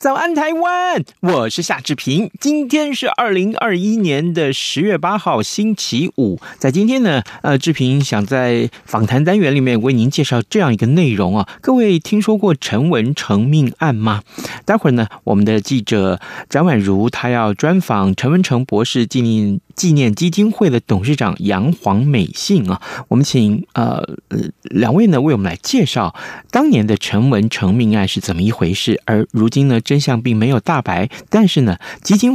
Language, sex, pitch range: Chinese, male, 110-175 Hz